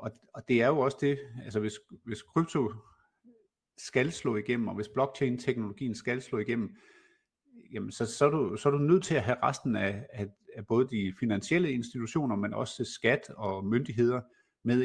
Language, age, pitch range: Danish, 50-69, 110-145 Hz